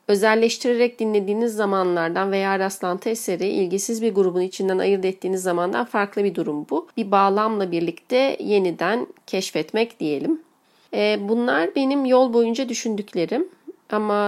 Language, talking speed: Turkish, 120 wpm